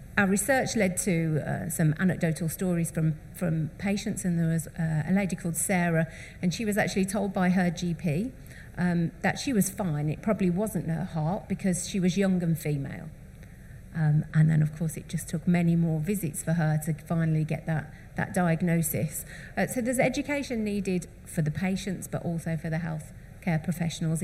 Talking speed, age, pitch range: 190 wpm, 40-59, 160-190 Hz